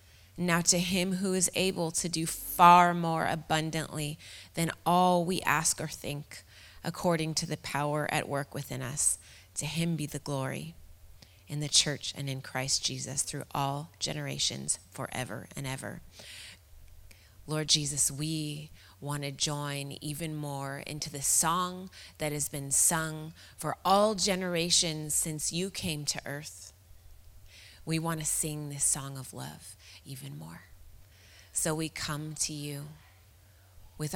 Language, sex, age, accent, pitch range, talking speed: English, female, 30-49, American, 125-170 Hz, 145 wpm